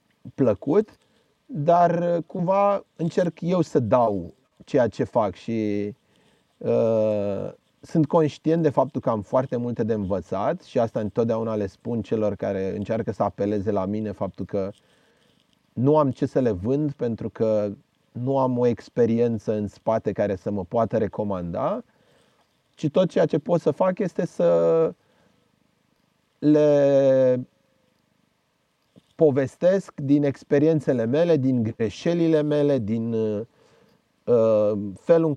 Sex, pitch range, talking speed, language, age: male, 110-150 Hz, 125 wpm, Romanian, 30-49